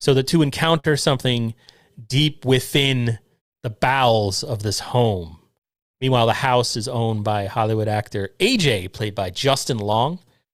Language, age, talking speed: English, 30-49, 140 wpm